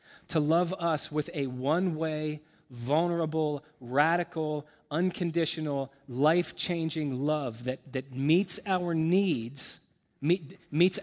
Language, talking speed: English, 90 wpm